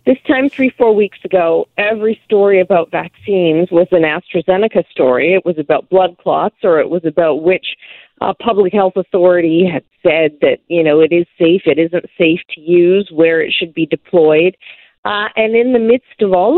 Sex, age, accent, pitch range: female, 40-59, American, 165-210 Hz